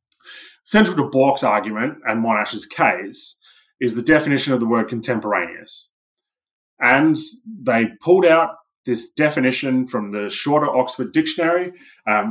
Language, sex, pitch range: English, male, 115-160 Hz